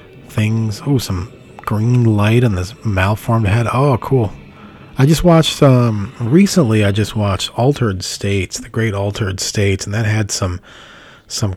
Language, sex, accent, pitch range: English, male, American, 95-120 Hz